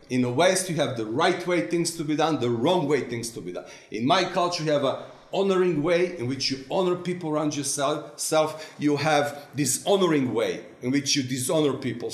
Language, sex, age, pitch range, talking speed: English, male, 40-59, 135-175 Hz, 215 wpm